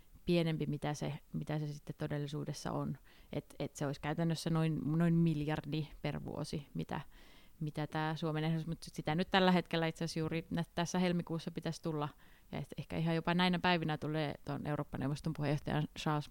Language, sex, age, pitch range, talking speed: Finnish, female, 30-49, 150-170 Hz, 170 wpm